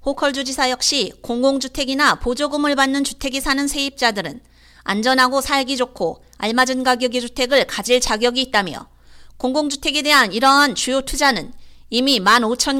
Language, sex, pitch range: Korean, female, 250-285 Hz